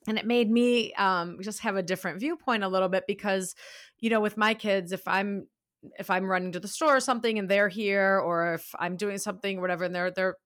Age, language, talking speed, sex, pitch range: 30-49, English, 240 wpm, female, 185-220 Hz